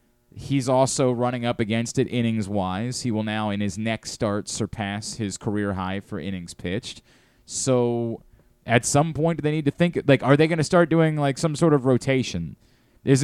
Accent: American